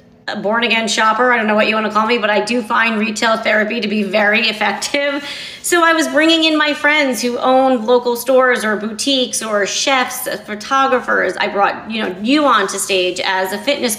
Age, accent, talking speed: 30-49, American, 205 wpm